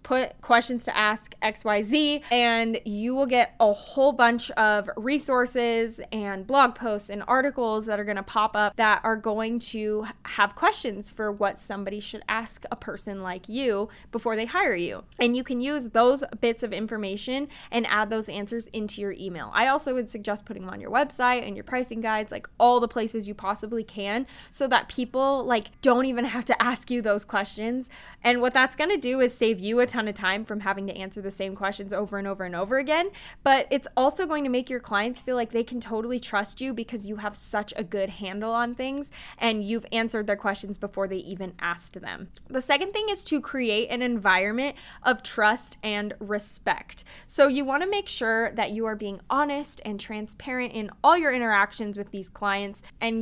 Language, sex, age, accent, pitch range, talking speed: English, female, 10-29, American, 205-255 Hz, 205 wpm